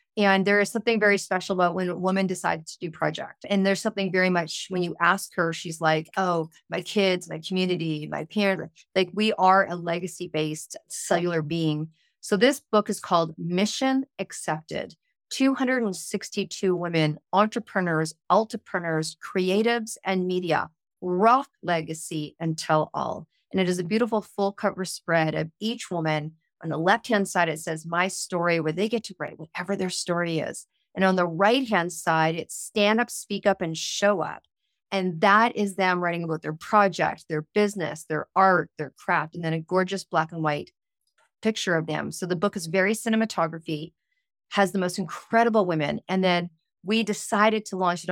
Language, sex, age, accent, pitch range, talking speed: English, female, 30-49, American, 165-205 Hz, 175 wpm